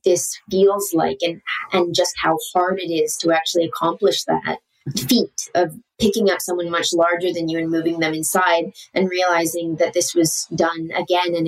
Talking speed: 185 wpm